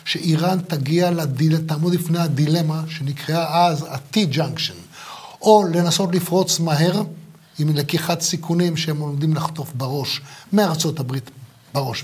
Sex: male